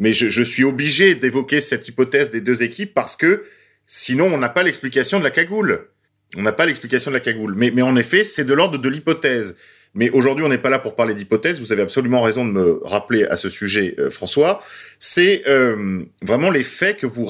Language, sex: French, male